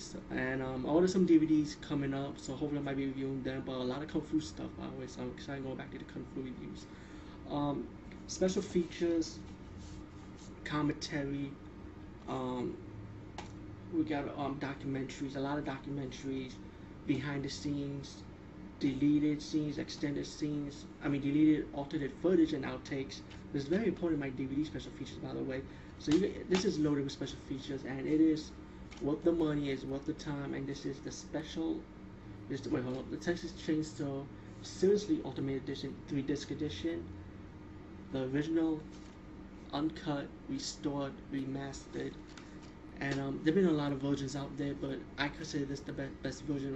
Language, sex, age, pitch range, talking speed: English, male, 20-39, 130-150 Hz, 175 wpm